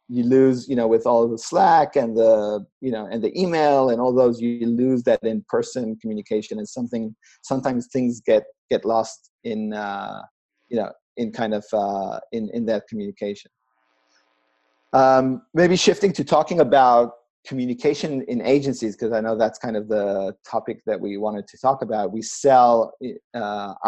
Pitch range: 110-130 Hz